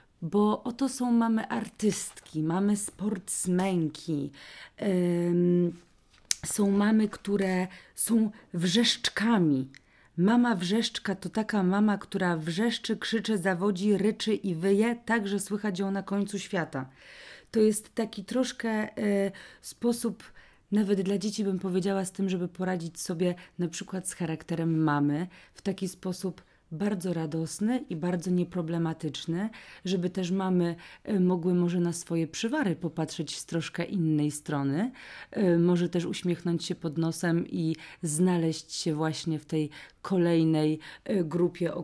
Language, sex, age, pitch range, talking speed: Polish, female, 30-49, 165-200 Hz, 125 wpm